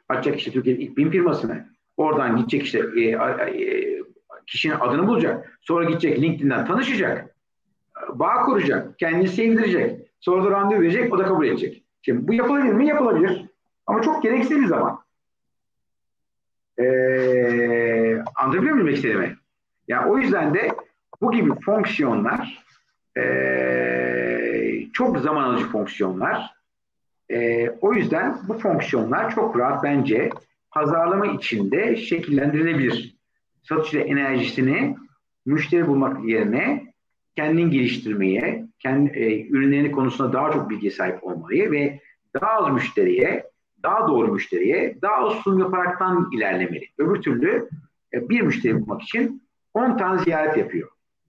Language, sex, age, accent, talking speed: Turkish, male, 50-69, native, 125 wpm